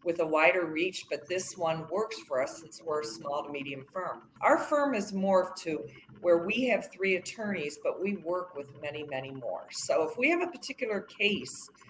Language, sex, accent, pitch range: English, female, American, 150-185 Hz